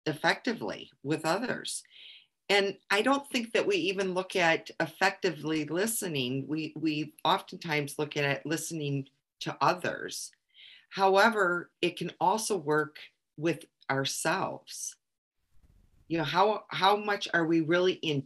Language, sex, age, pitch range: English, female, 40-59, 145-190 Hz